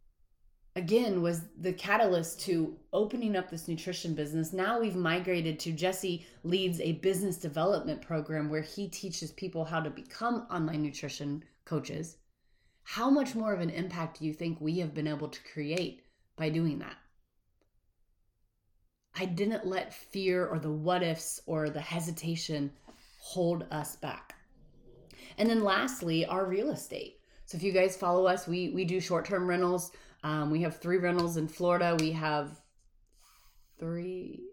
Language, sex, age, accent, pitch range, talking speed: English, female, 30-49, American, 155-185 Hz, 155 wpm